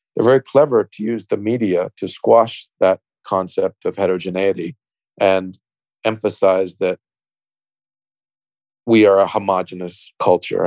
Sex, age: male, 40-59